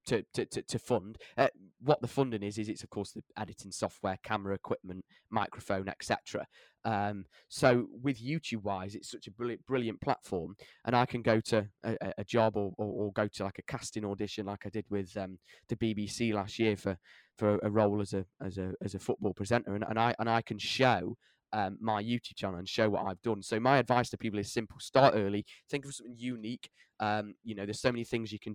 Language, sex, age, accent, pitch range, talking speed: English, male, 10-29, British, 100-120 Hz, 225 wpm